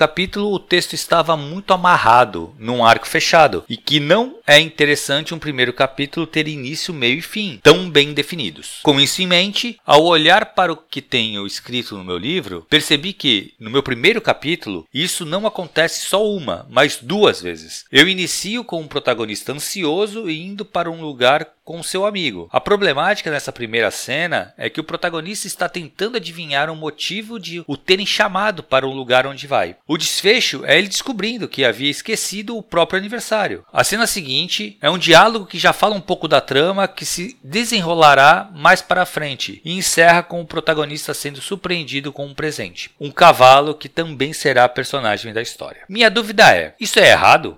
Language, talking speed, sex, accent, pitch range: Portuguese, 185 wpm, male, Brazilian, 140-190 Hz